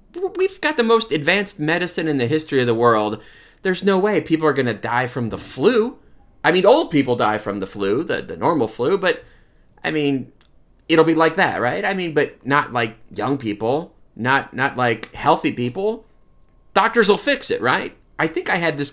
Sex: male